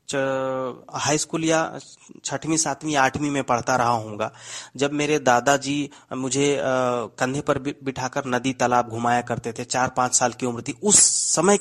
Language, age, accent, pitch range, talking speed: Hindi, 30-49, native, 130-170 Hz, 155 wpm